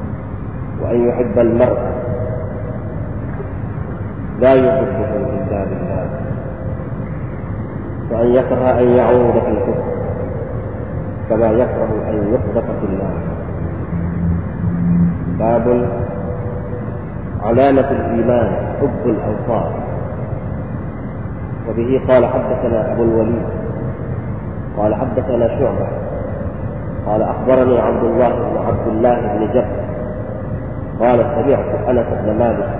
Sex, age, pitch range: male, 40-59, 105-125 Hz